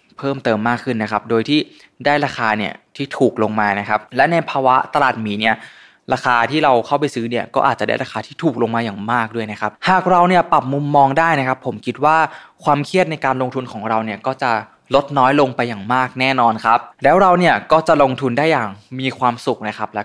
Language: Thai